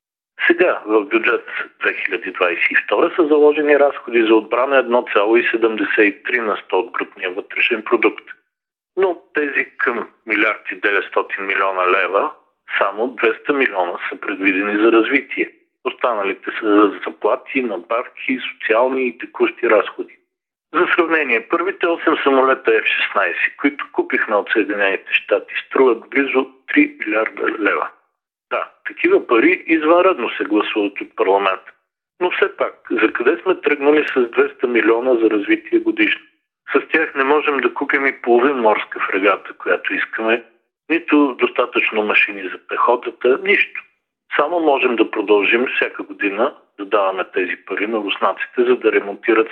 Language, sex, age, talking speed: Bulgarian, male, 40-59, 130 wpm